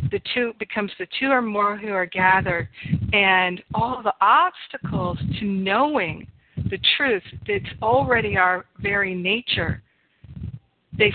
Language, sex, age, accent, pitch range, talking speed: English, female, 50-69, American, 185-220 Hz, 130 wpm